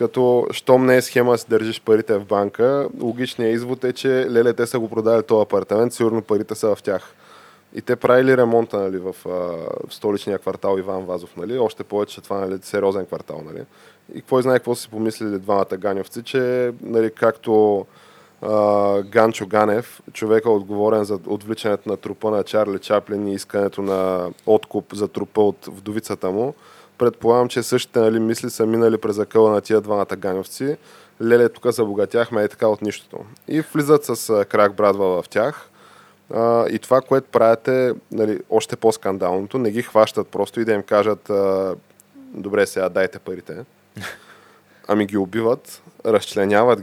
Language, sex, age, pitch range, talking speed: Bulgarian, male, 20-39, 100-120 Hz, 165 wpm